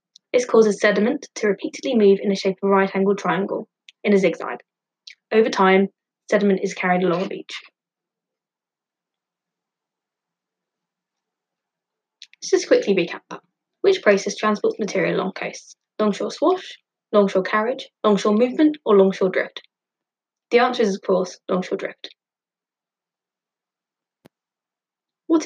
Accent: British